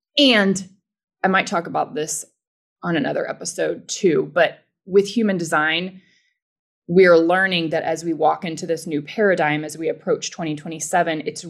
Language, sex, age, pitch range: English, female, 20-39, 165-230 Hz